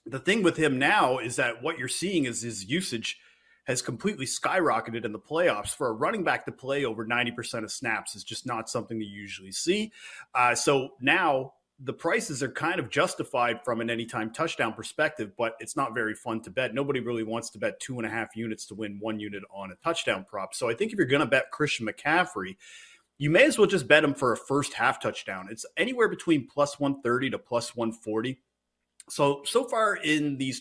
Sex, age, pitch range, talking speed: male, 30-49, 115-155 Hz, 215 wpm